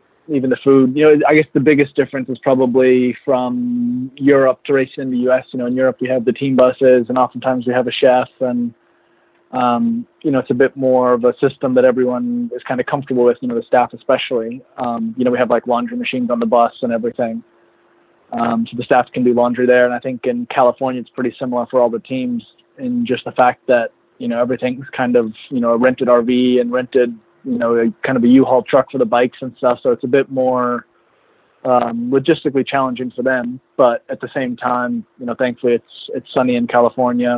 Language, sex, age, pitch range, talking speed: English, male, 20-39, 120-130 Hz, 230 wpm